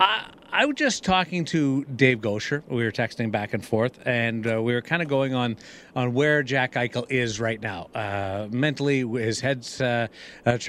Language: English